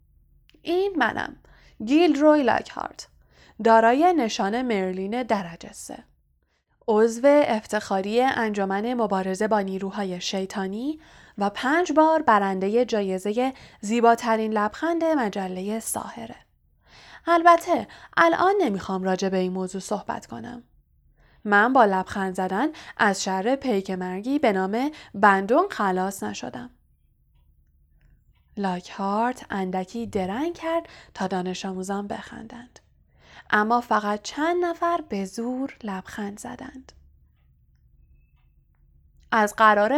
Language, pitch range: Persian, 190-265 Hz